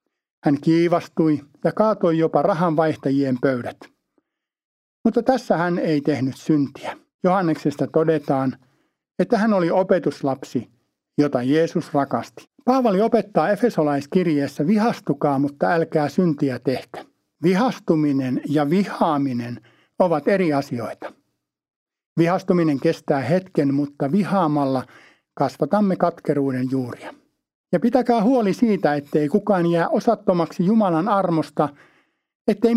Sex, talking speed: male, 100 wpm